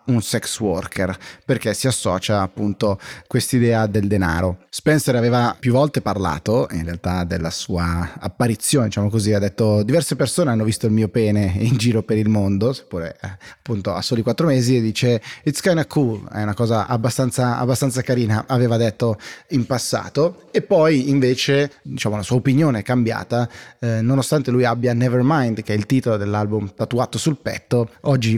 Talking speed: 175 wpm